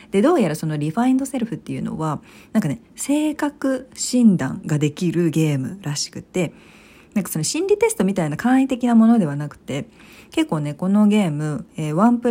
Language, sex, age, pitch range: Japanese, female, 40-59, 160-230 Hz